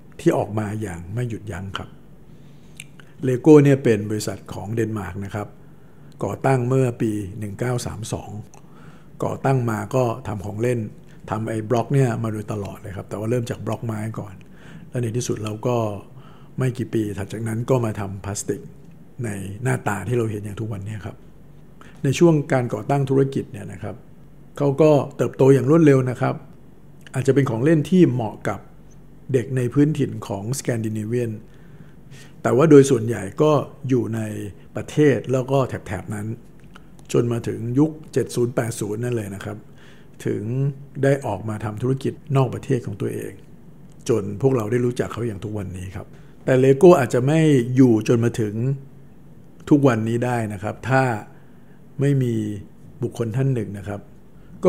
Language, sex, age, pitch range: Thai, male, 60-79, 110-140 Hz